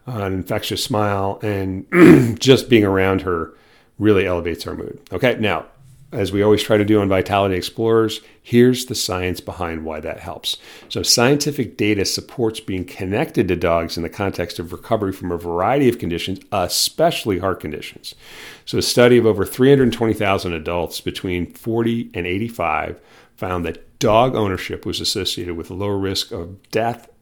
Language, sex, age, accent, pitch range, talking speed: English, male, 50-69, American, 90-115 Hz, 165 wpm